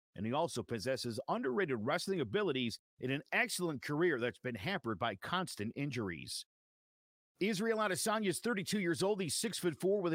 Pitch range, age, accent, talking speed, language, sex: 130-185 Hz, 50-69, American, 155 wpm, English, male